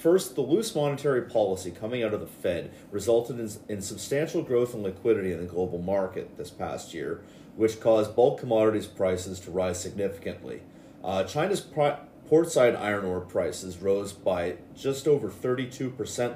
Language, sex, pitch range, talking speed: English, male, 95-130 Hz, 160 wpm